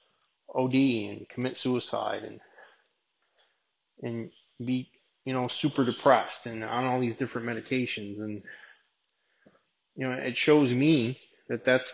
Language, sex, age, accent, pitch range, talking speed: English, male, 20-39, American, 125-150 Hz, 125 wpm